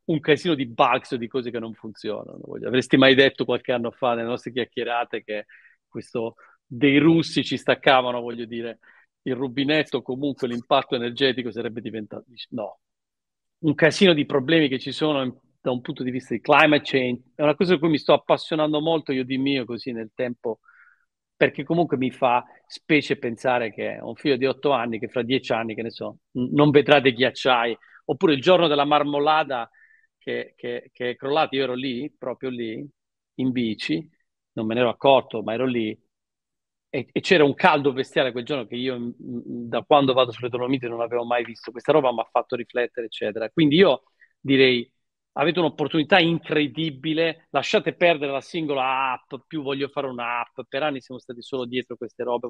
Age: 40-59